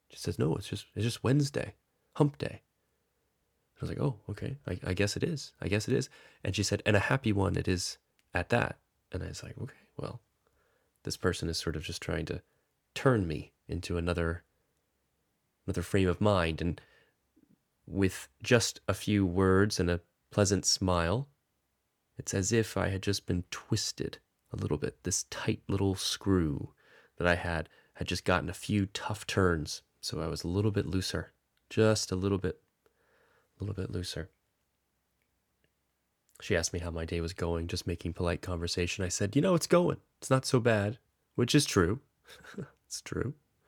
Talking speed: 185 wpm